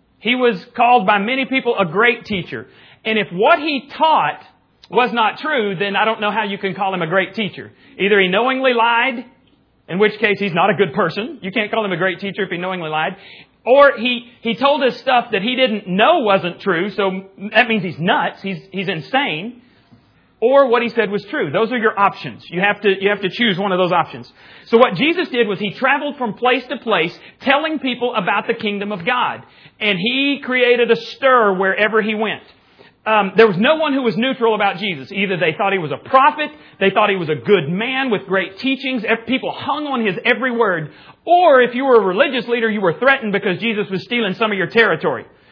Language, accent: English, American